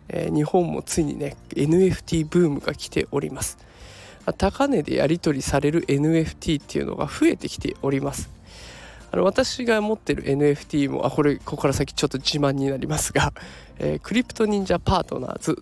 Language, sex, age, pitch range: Japanese, male, 20-39, 140-215 Hz